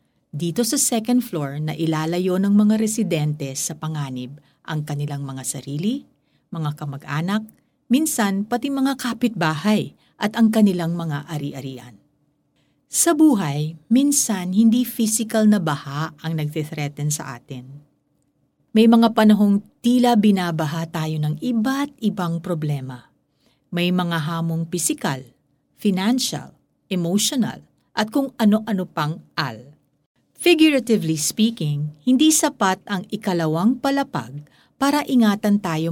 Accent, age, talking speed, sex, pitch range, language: native, 50-69, 115 wpm, female, 150-225 Hz, Filipino